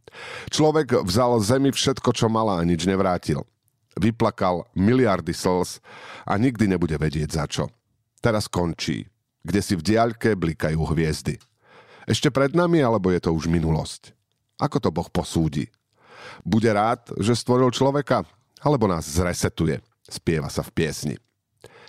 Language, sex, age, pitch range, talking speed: Slovak, male, 50-69, 90-120 Hz, 135 wpm